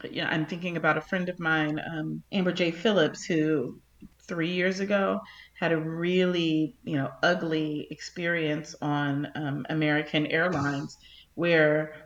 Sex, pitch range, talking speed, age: female, 150-180 Hz, 145 wpm, 30-49